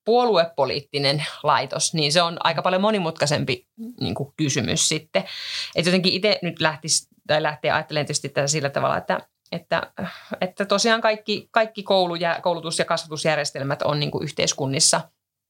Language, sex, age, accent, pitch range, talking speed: Finnish, female, 30-49, native, 150-195 Hz, 110 wpm